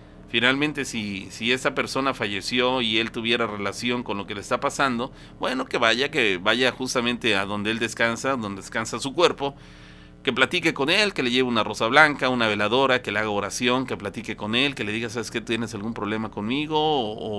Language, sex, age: Spanish, male, 40-59